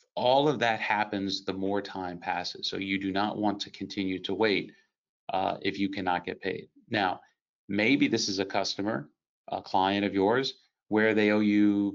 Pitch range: 95-110 Hz